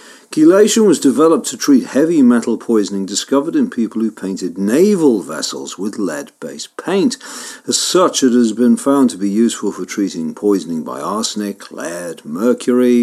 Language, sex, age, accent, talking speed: English, male, 50-69, British, 155 wpm